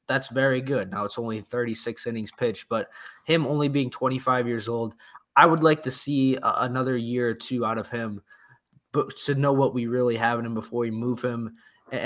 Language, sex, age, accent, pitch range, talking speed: English, male, 20-39, American, 115-135 Hz, 215 wpm